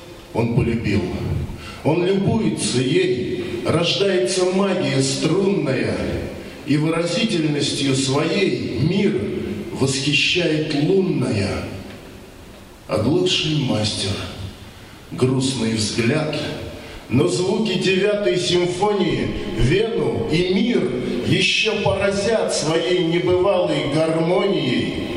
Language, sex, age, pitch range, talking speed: Russian, male, 40-59, 115-185 Hz, 75 wpm